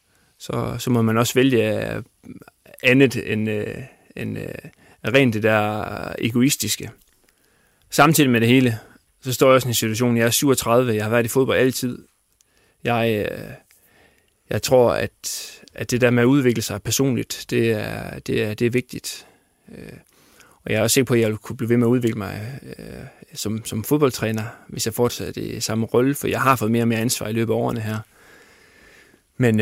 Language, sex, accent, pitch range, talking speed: Danish, male, native, 110-125 Hz, 195 wpm